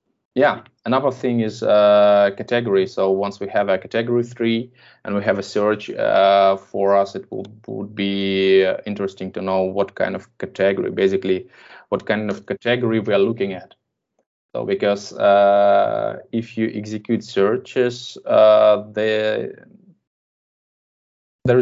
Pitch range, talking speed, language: 95-115 Hz, 140 wpm, English